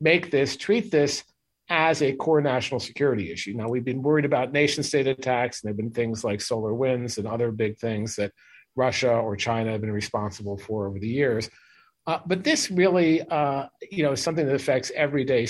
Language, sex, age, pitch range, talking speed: English, male, 50-69, 115-145 Hz, 200 wpm